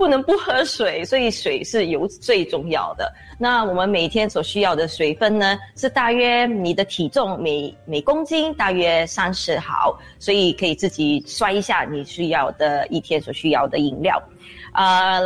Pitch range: 175-235 Hz